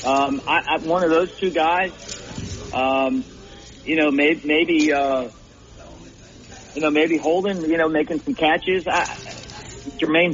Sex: male